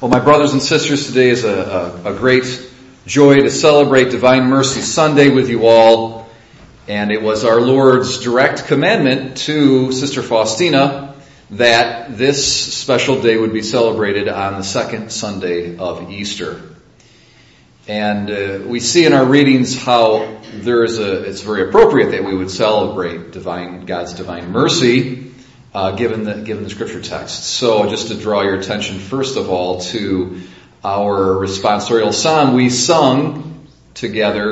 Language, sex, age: English, male, 40-59